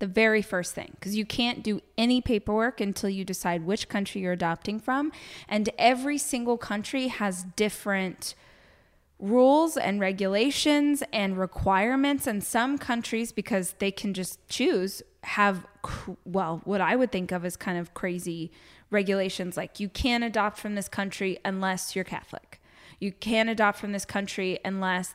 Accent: American